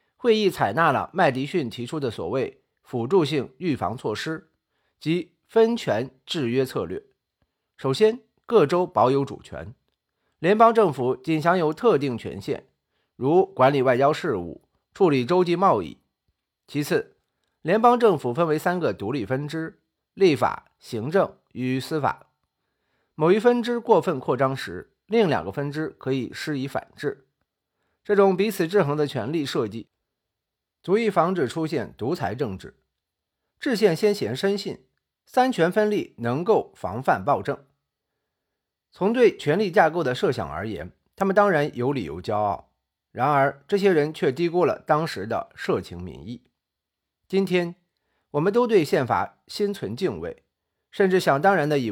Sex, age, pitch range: male, 50-69, 135-200 Hz